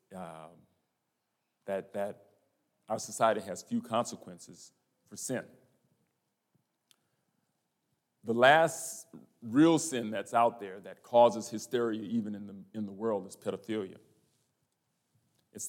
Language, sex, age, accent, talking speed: English, male, 40-59, American, 110 wpm